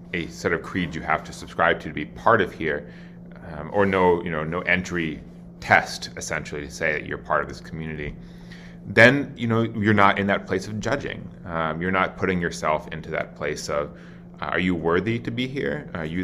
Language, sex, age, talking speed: English, male, 30-49, 220 wpm